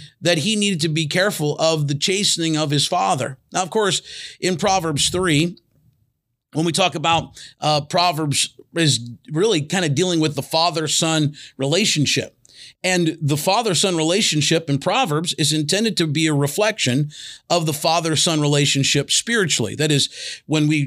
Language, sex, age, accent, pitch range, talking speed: English, male, 40-59, American, 145-180 Hz, 155 wpm